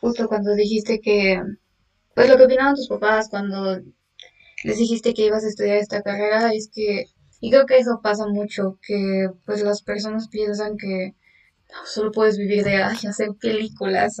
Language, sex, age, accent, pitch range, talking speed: Spanish, female, 10-29, Mexican, 210-250 Hz, 175 wpm